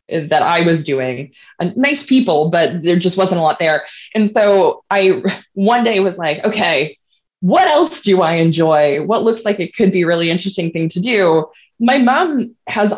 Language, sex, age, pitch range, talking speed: English, female, 20-39, 155-200 Hz, 190 wpm